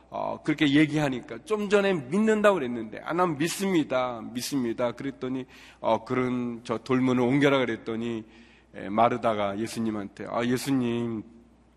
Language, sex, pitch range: Korean, male, 115-160 Hz